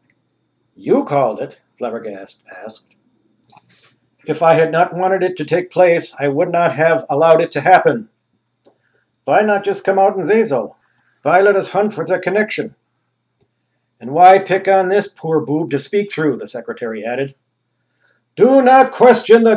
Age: 50-69